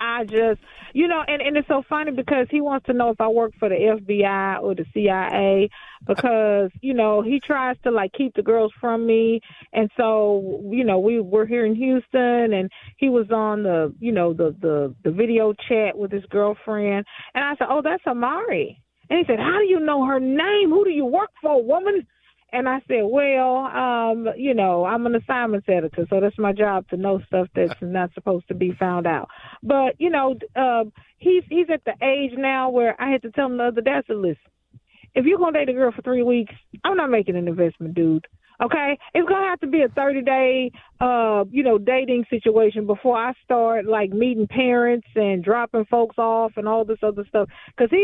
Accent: American